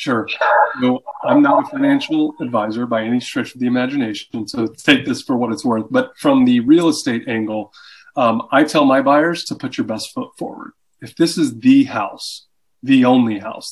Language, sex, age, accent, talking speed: English, male, 20-39, American, 195 wpm